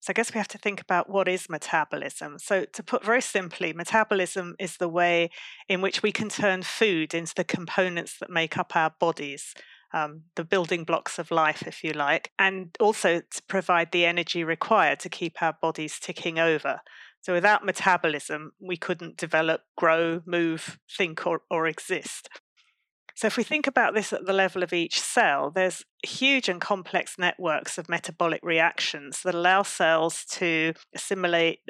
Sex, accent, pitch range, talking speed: female, British, 160-190 Hz, 175 wpm